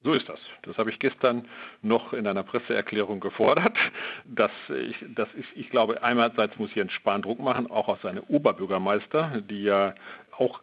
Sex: male